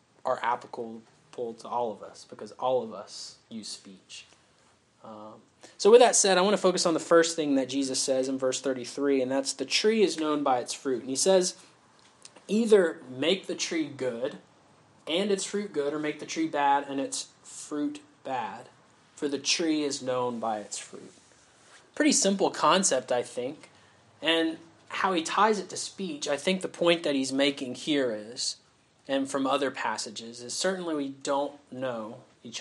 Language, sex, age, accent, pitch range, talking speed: English, male, 20-39, American, 130-170 Hz, 185 wpm